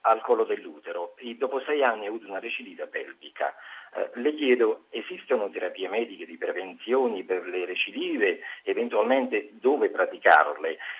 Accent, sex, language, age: native, male, Italian, 50-69